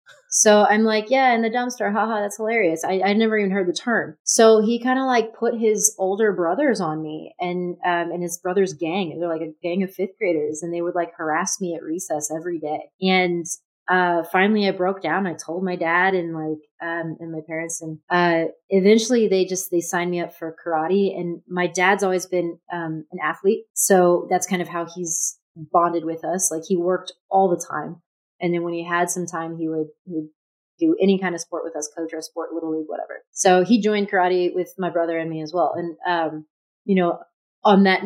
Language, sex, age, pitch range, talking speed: English, female, 30-49, 165-195 Hz, 225 wpm